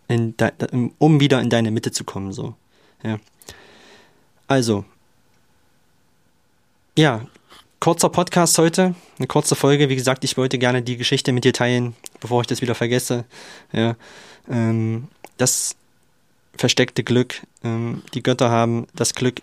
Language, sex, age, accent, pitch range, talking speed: German, male, 20-39, German, 115-140 Hz, 140 wpm